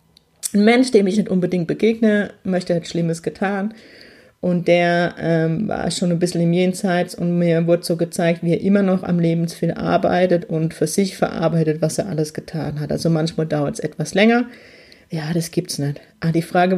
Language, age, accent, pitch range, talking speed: German, 30-49, German, 165-180 Hz, 195 wpm